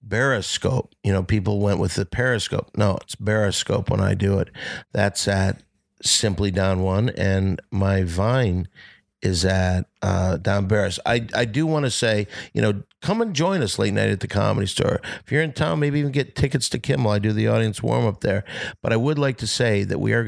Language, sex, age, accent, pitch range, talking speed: English, male, 50-69, American, 100-120 Hz, 215 wpm